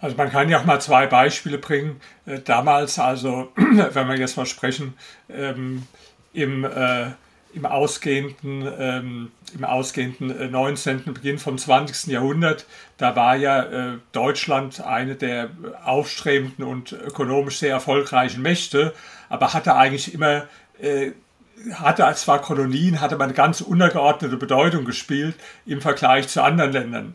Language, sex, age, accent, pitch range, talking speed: German, male, 50-69, German, 130-150 Hz, 130 wpm